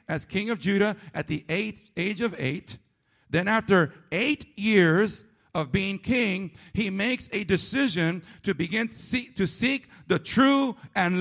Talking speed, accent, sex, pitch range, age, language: 145 wpm, American, male, 185-255 Hz, 50-69, English